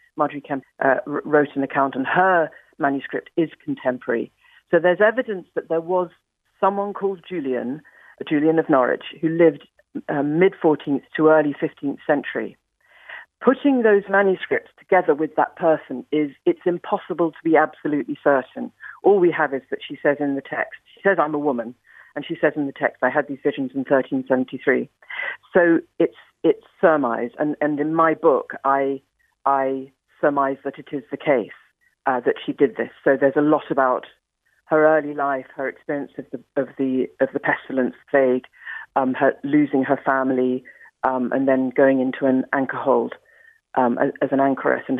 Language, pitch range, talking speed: English, 135-170 Hz, 175 wpm